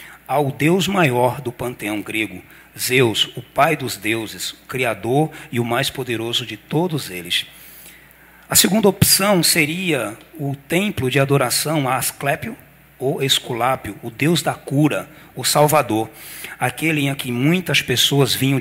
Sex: male